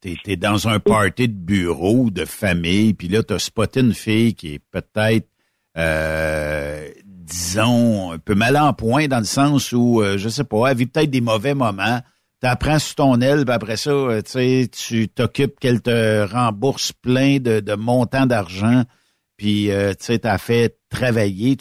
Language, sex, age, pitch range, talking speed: French, male, 60-79, 100-125 Hz, 175 wpm